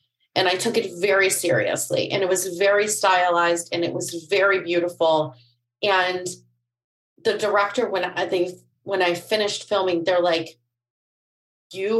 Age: 30-49